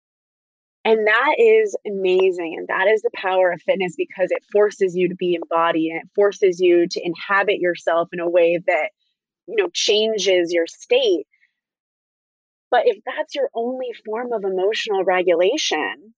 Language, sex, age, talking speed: English, female, 20-39, 160 wpm